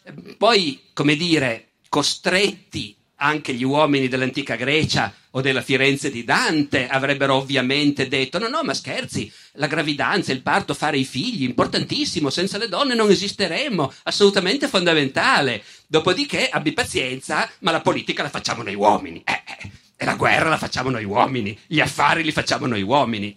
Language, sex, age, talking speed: Italian, male, 40-59, 155 wpm